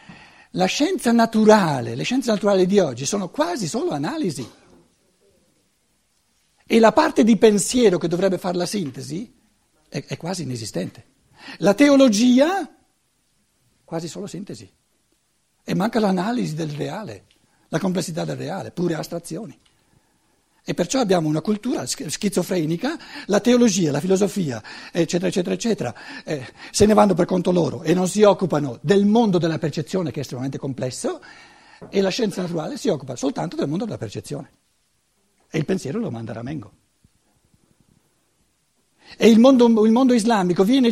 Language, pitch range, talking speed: Italian, 165-230 Hz, 145 wpm